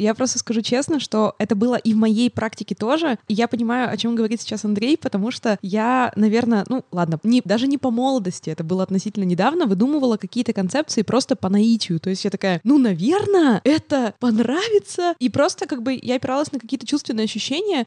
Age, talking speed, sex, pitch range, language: 20-39, 195 wpm, female, 195-245 Hz, Russian